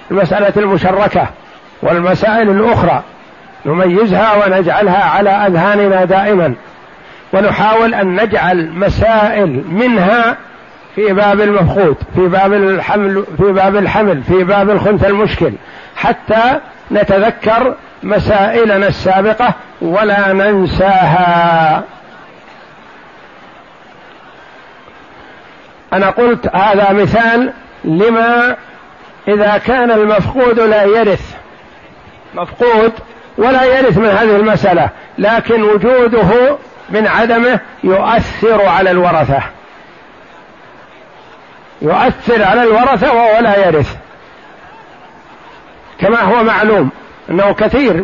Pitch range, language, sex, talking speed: 195-230 Hz, Arabic, male, 80 wpm